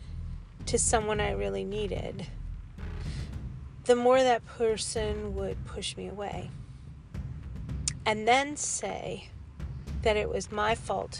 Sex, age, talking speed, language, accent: female, 40-59, 115 wpm, English, American